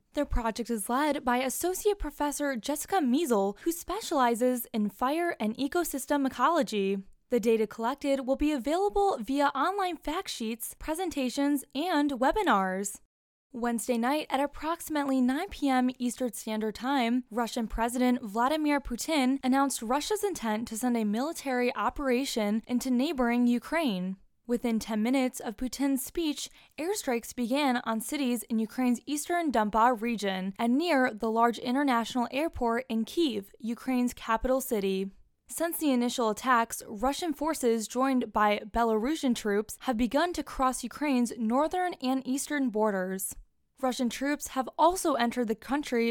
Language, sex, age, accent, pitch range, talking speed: English, female, 10-29, American, 230-290 Hz, 135 wpm